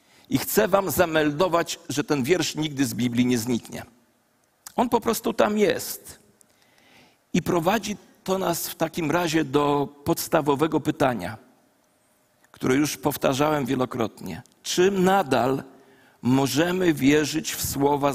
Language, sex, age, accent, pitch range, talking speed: Polish, male, 50-69, native, 145-210 Hz, 120 wpm